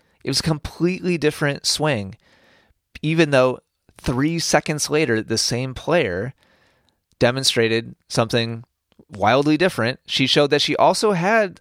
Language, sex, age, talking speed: English, male, 30-49, 125 wpm